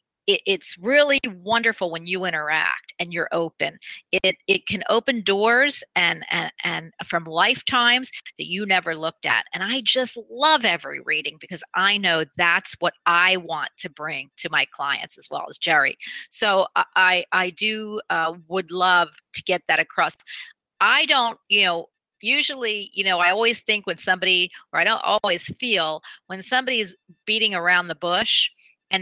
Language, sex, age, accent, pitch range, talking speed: English, female, 40-59, American, 175-225 Hz, 170 wpm